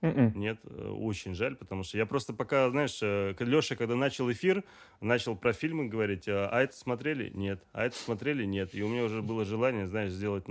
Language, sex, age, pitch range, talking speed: Russian, male, 30-49, 95-125 Hz, 190 wpm